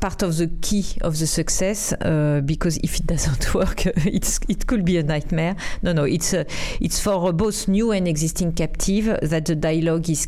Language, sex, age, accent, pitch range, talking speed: English, female, 40-59, French, 165-195 Hz, 195 wpm